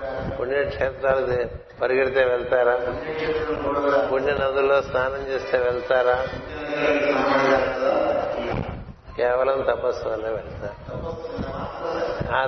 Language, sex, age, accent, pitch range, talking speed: Telugu, male, 60-79, native, 125-155 Hz, 60 wpm